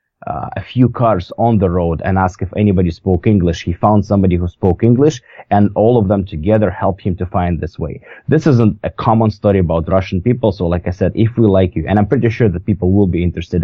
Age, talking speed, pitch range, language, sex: 20-39, 240 wpm, 90-105 Hz, English, male